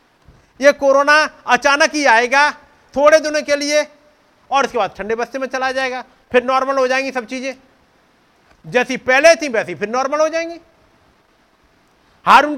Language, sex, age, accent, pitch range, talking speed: Hindi, male, 50-69, native, 185-280 Hz, 155 wpm